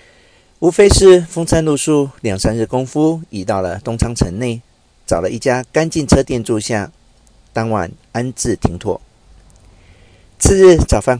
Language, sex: Chinese, male